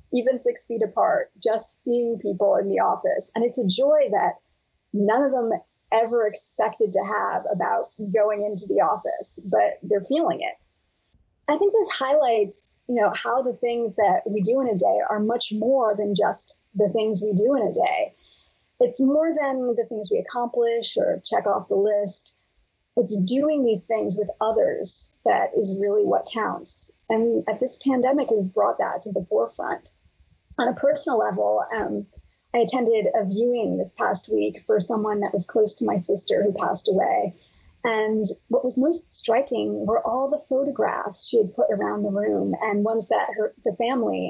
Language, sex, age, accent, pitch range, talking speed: English, female, 30-49, American, 210-260 Hz, 180 wpm